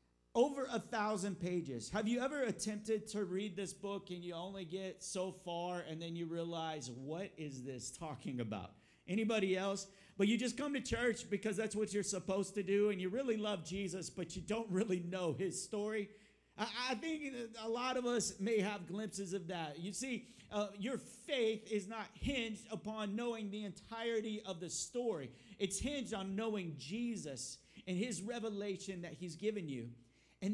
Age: 50-69